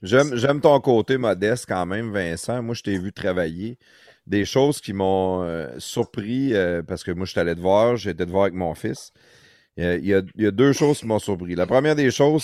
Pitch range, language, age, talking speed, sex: 95-125 Hz, French, 30-49, 245 wpm, male